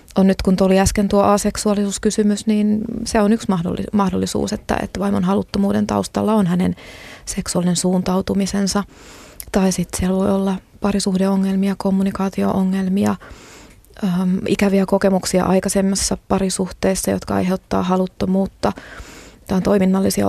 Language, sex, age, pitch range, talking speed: Finnish, female, 20-39, 180-200 Hz, 115 wpm